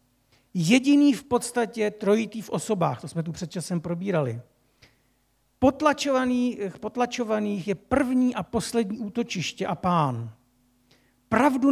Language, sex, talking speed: Czech, male, 115 wpm